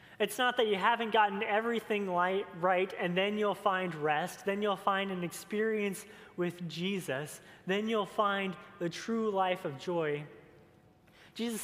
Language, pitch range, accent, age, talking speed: English, 175-210 Hz, American, 30-49, 150 wpm